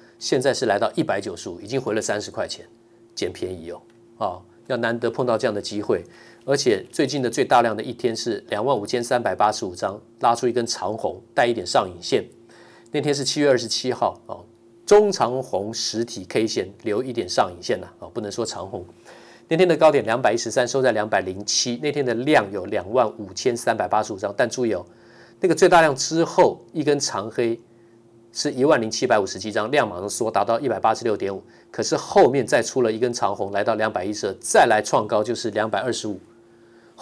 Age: 40-59